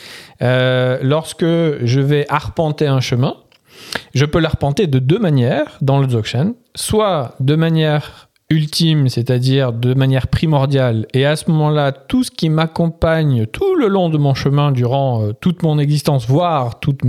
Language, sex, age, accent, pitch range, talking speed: French, male, 40-59, French, 130-165 Hz, 155 wpm